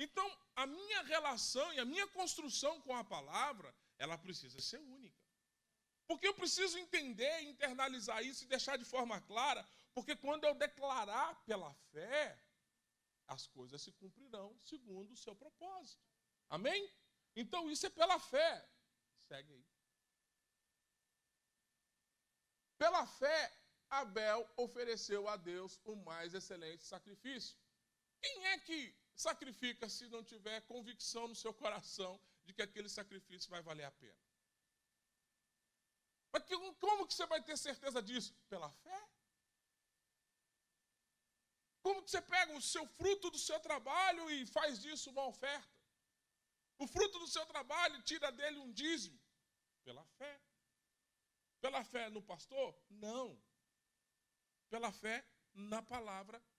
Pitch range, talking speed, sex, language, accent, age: 215-320 Hz, 130 wpm, male, Portuguese, Brazilian, 20-39